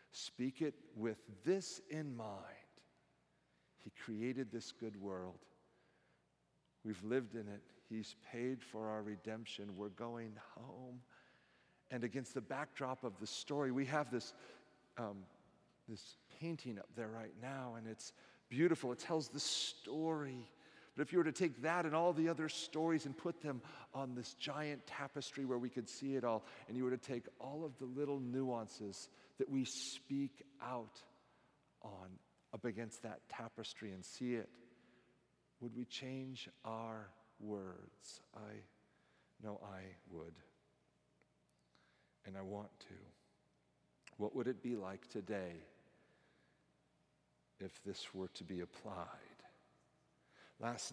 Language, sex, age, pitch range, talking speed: English, male, 50-69, 100-135 Hz, 140 wpm